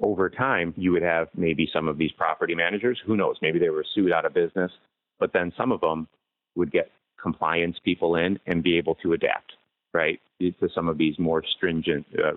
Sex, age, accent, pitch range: male, 30-49, American, 80-105 Hz